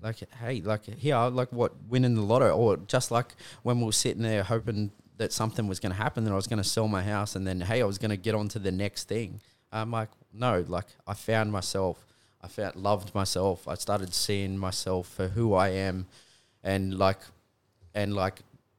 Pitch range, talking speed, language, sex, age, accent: 95-110 Hz, 220 wpm, English, male, 20-39, Australian